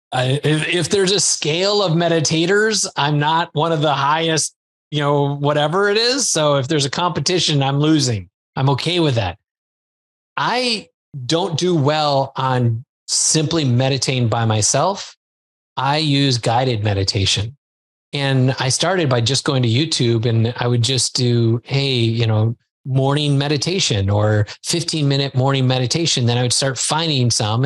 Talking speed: 150 wpm